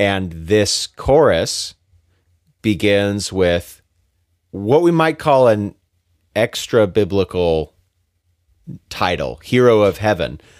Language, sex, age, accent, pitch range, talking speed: English, male, 40-59, American, 90-115 Hz, 85 wpm